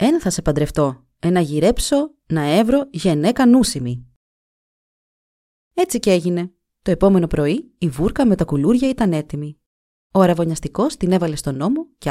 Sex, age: female, 30-49